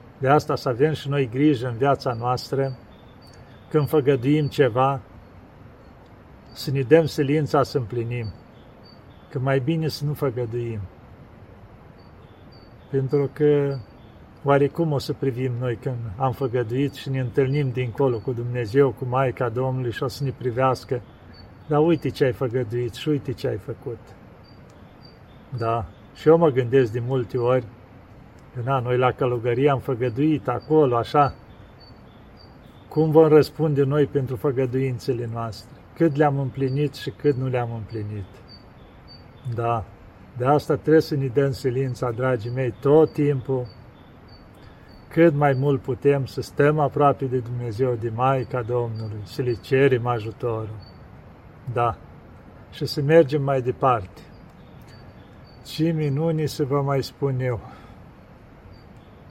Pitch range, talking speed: 120-145 Hz, 135 wpm